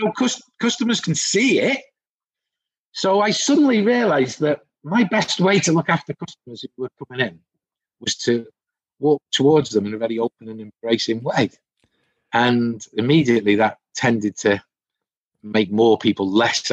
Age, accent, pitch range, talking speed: 40-59, British, 100-145 Hz, 145 wpm